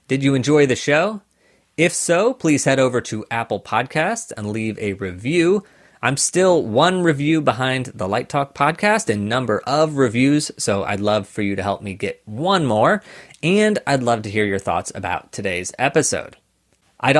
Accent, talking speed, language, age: American, 180 wpm, English, 30-49